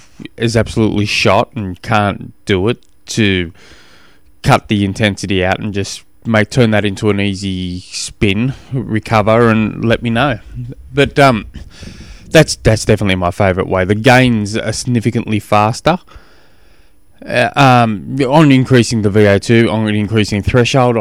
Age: 20-39